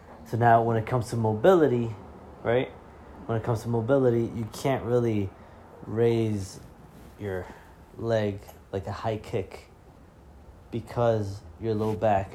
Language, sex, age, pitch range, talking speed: English, male, 20-39, 85-105 Hz, 130 wpm